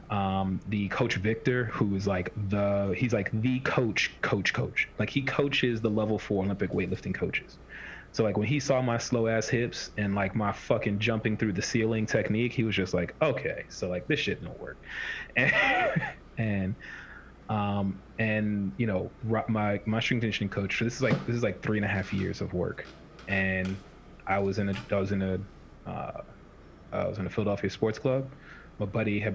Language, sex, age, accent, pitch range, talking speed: English, male, 30-49, American, 95-115 Hz, 195 wpm